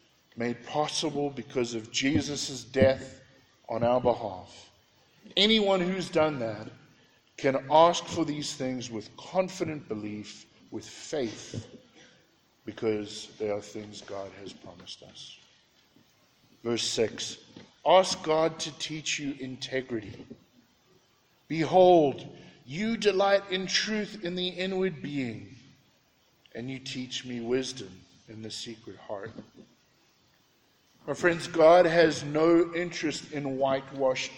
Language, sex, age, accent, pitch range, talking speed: English, male, 50-69, American, 120-155 Hz, 115 wpm